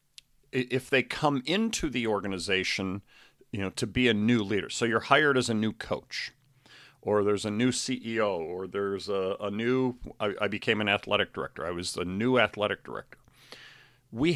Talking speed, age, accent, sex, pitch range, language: 180 wpm, 50-69, American, male, 105-135 Hz, English